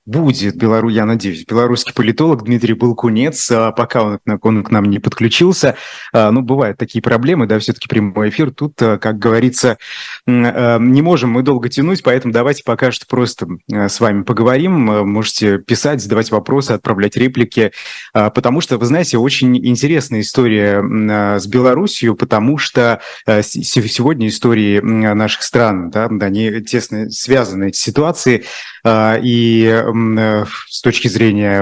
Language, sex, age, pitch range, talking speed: Russian, male, 20-39, 105-125 Hz, 130 wpm